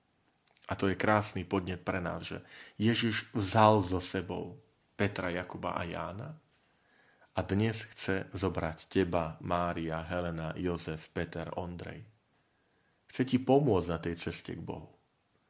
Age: 40-59